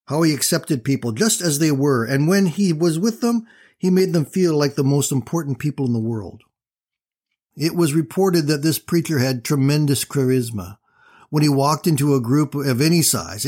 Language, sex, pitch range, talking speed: English, male, 125-160 Hz, 195 wpm